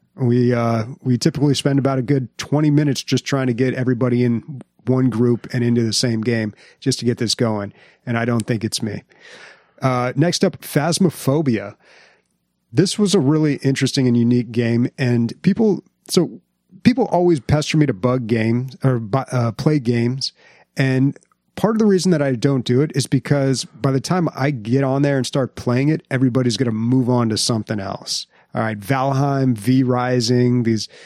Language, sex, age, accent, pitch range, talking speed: English, male, 30-49, American, 120-140 Hz, 185 wpm